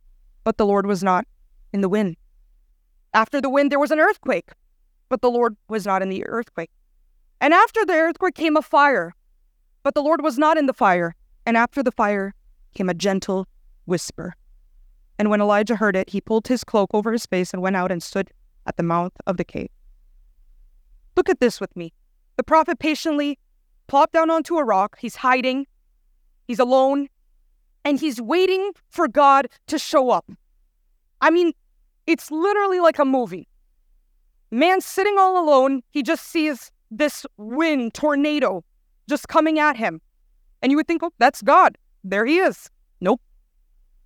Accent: American